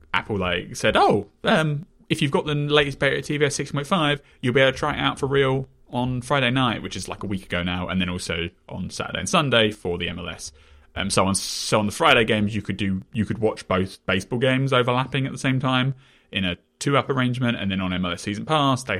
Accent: British